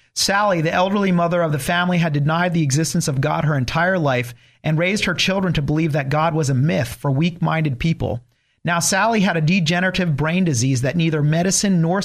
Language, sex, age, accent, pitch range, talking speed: English, male, 40-59, American, 130-170 Hz, 205 wpm